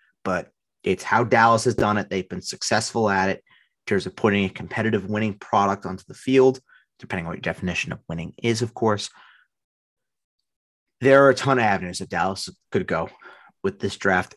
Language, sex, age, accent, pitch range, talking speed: English, male, 30-49, American, 95-120 Hz, 190 wpm